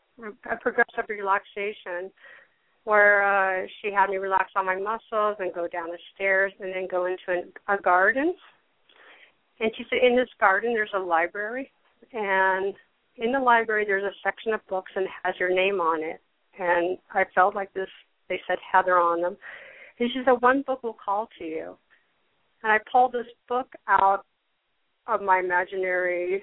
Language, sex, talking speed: English, female, 175 wpm